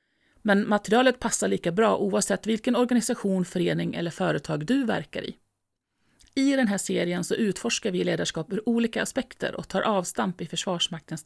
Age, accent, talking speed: 30-49, native, 160 wpm